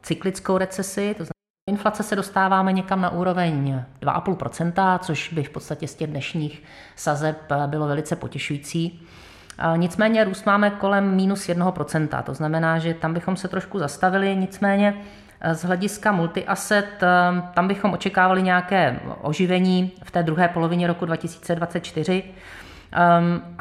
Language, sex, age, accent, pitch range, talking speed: Czech, female, 30-49, native, 155-185 Hz, 130 wpm